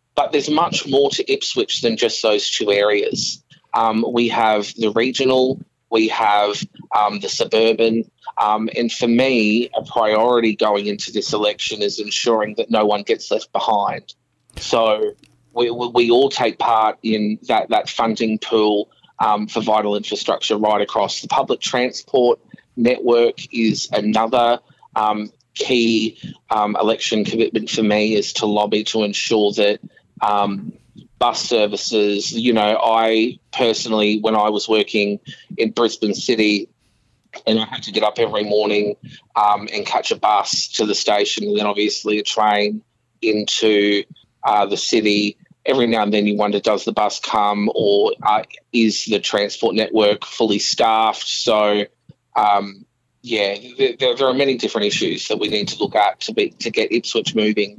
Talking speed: 160 wpm